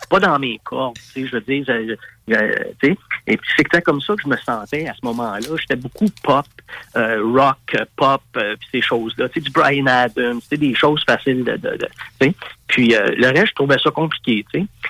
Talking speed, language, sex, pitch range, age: 220 wpm, French, male, 120-155 Hz, 50-69